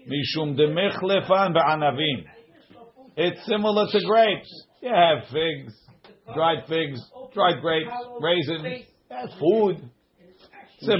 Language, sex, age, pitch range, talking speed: English, male, 50-69, 140-180 Hz, 65 wpm